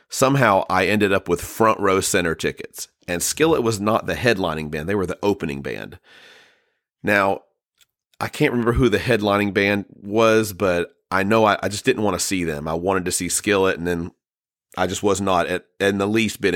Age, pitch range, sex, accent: 40-59, 90-110 Hz, male, American